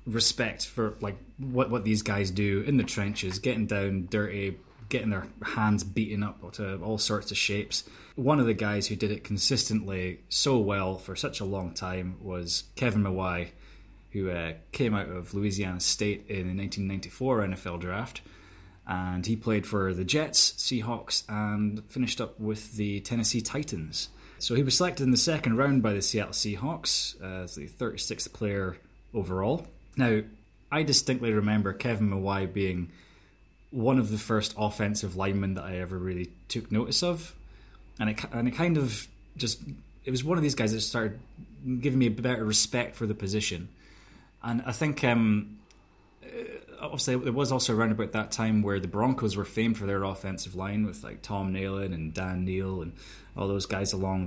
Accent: British